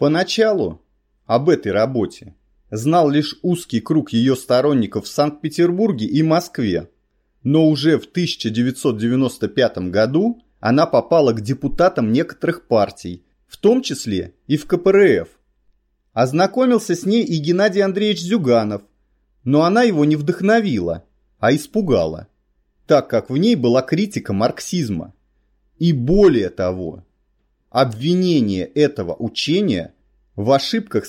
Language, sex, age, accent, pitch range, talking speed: Russian, male, 30-49, native, 105-175 Hz, 115 wpm